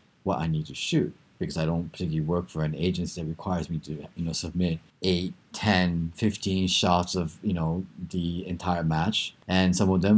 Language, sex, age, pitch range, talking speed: English, male, 30-49, 80-95 Hz, 200 wpm